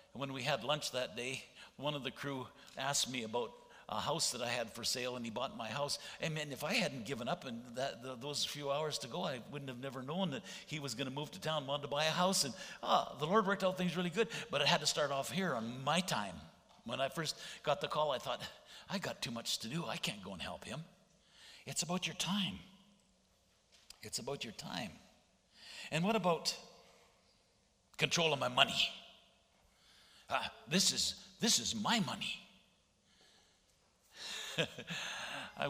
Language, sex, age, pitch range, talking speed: English, male, 60-79, 125-180 Hz, 200 wpm